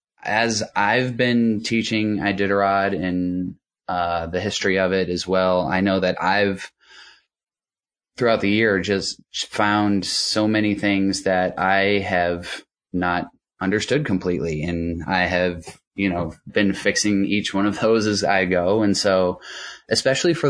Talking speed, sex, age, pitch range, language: 145 wpm, male, 20-39, 95-115 Hz, English